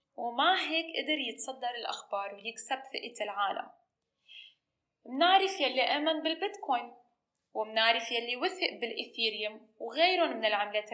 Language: Arabic